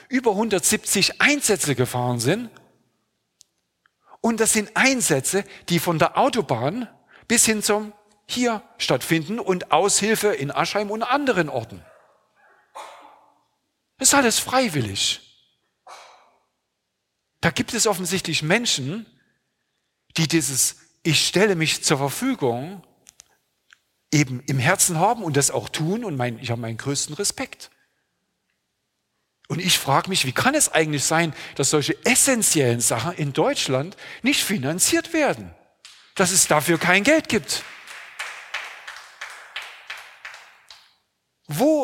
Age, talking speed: 50-69, 115 wpm